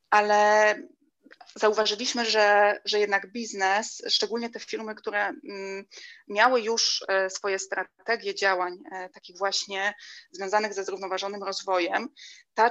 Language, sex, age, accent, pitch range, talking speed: Polish, female, 20-39, native, 195-220 Hz, 105 wpm